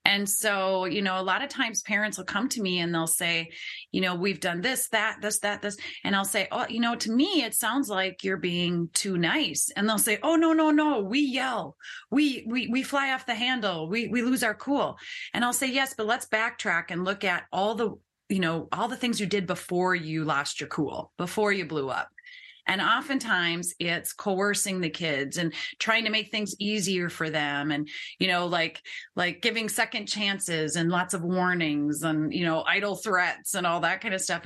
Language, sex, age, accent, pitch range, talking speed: English, female, 30-49, American, 175-240 Hz, 220 wpm